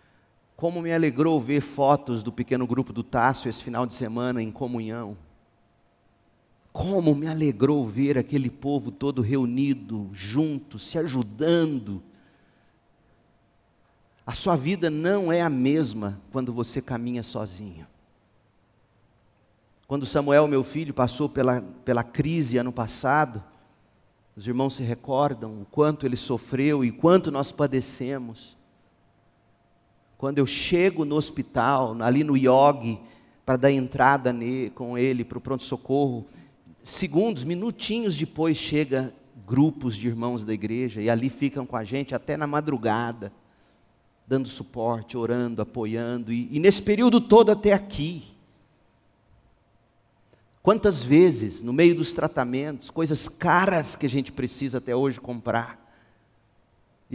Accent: Brazilian